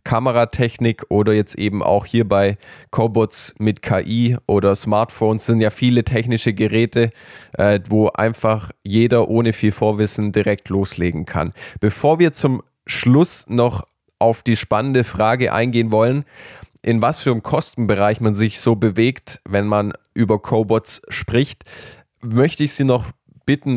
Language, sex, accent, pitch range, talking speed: German, male, German, 110-120 Hz, 140 wpm